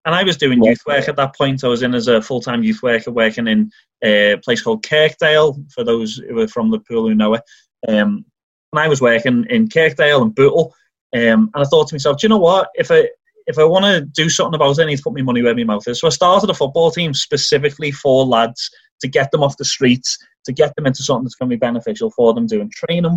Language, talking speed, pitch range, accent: English, 260 wpm, 120-170 Hz, British